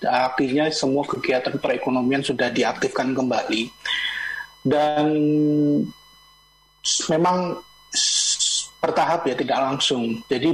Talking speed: 80 wpm